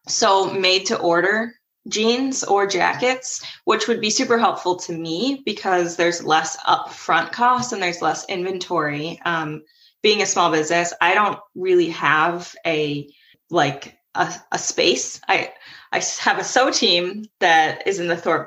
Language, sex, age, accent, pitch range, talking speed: English, female, 20-39, American, 165-225 Hz, 155 wpm